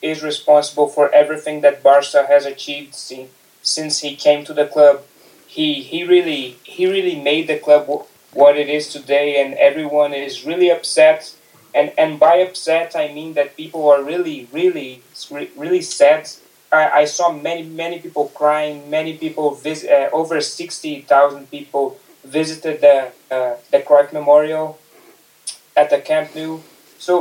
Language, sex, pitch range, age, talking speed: English, male, 145-165 Hz, 20-39, 155 wpm